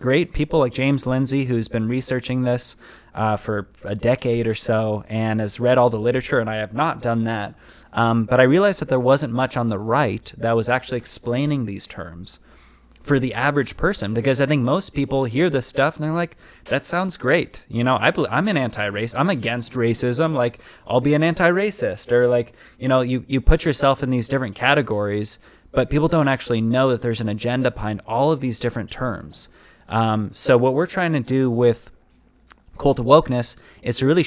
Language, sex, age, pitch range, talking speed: English, male, 20-39, 110-135 Hz, 205 wpm